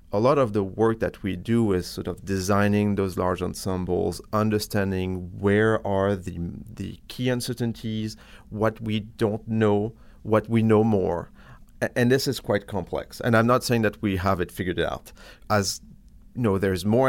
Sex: male